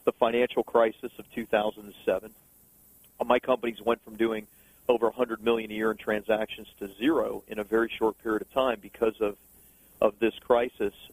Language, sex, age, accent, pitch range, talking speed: English, male, 40-59, American, 105-115 Hz, 165 wpm